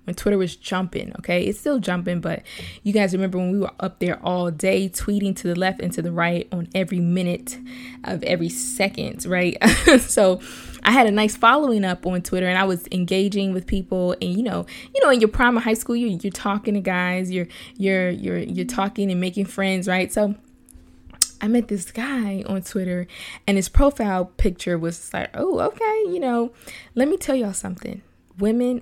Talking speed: 200 wpm